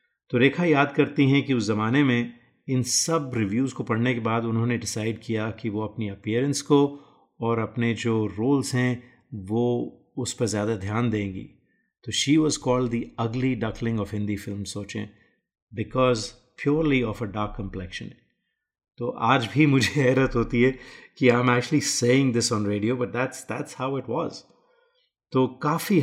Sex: male